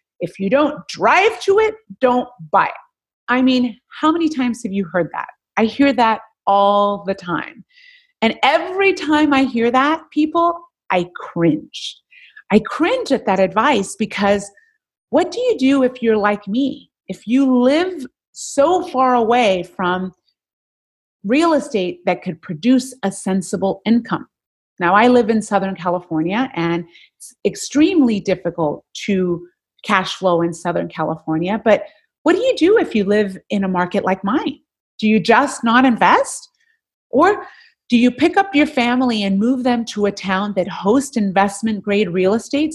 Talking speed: 160 wpm